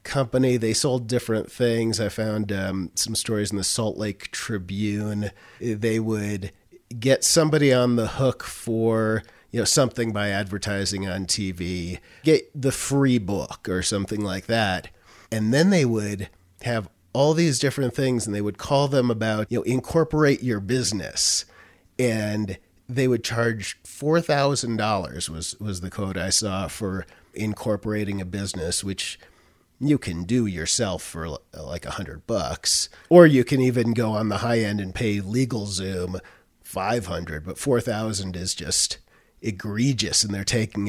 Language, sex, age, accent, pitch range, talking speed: English, male, 40-59, American, 95-125 Hz, 155 wpm